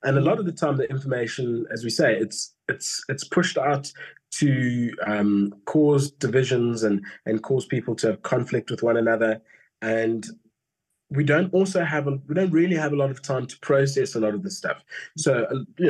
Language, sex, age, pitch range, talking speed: English, male, 20-39, 110-150 Hz, 200 wpm